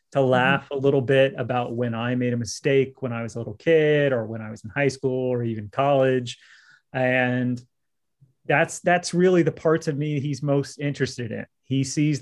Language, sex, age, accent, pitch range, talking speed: English, male, 30-49, American, 125-150 Hz, 200 wpm